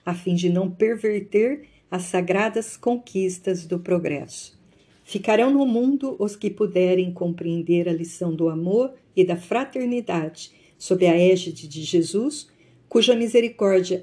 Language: Portuguese